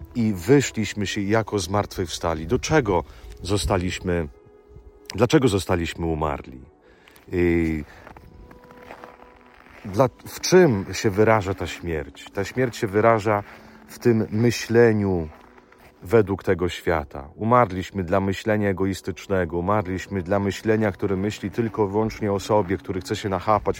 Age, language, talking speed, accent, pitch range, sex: 40-59, Italian, 115 wpm, Polish, 90-110 Hz, male